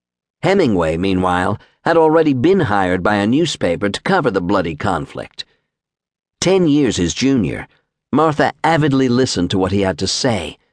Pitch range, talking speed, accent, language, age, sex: 95-135 Hz, 150 wpm, American, English, 50-69, male